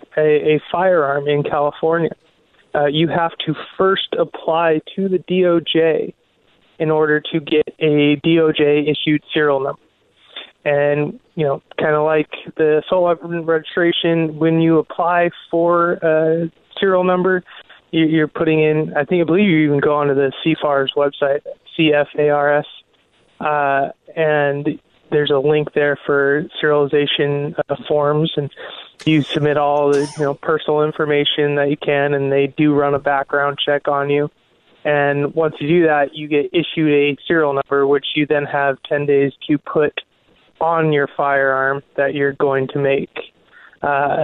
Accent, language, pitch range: American, English, 140-160 Hz